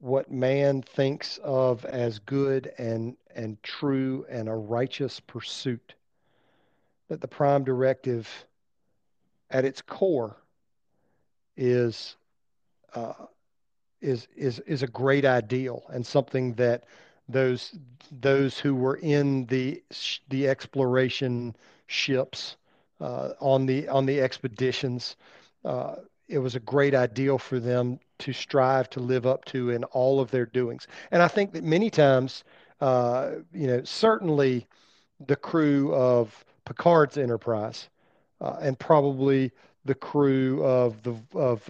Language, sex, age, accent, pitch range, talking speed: English, male, 40-59, American, 125-140 Hz, 125 wpm